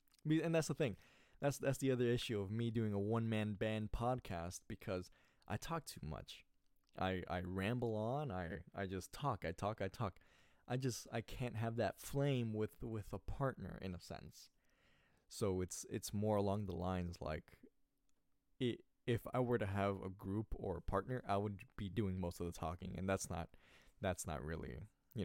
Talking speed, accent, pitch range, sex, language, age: 190 wpm, American, 95-125 Hz, male, English, 20-39